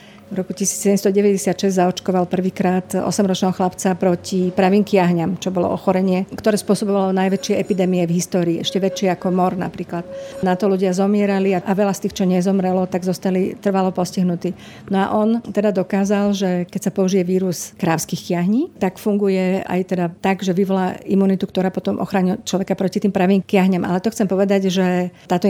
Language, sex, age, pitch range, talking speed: Slovak, female, 50-69, 185-200 Hz, 165 wpm